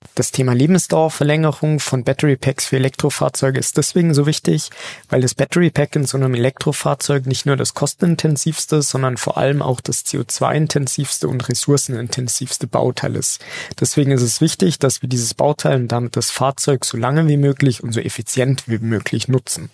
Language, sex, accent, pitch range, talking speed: German, male, German, 125-150 Hz, 165 wpm